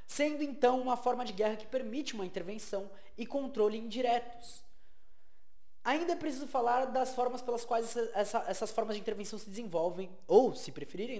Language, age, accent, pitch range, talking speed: Portuguese, 20-39, Brazilian, 210-260 Hz, 160 wpm